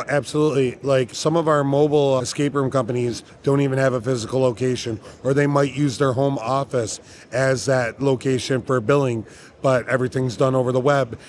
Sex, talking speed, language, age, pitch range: male, 175 wpm, English, 20-39, 130-150 Hz